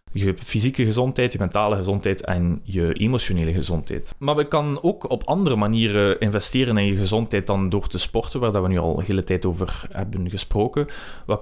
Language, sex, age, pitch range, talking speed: Dutch, male, 20-39, 95-120 Hz, 190 wpm